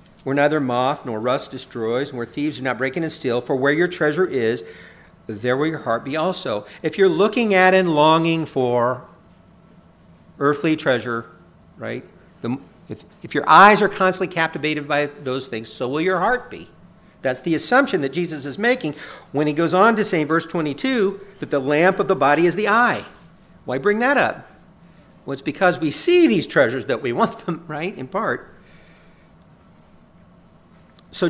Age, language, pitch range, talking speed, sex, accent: 50-69, English, 130-180 Hz, 180 wpm, male, American